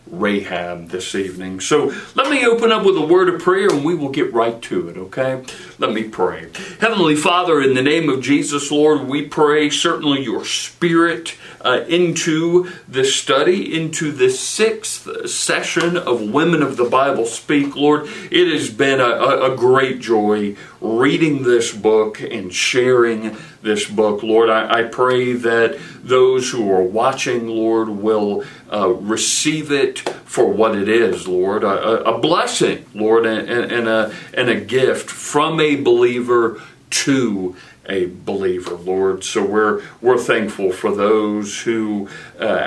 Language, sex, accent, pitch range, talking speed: English, male, American, 110-160 Hz, 155 wpm